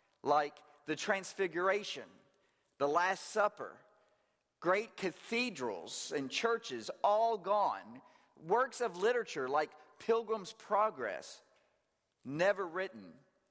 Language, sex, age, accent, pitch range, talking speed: English, male, 50-69, American, 160-215 Hz, 90 wpm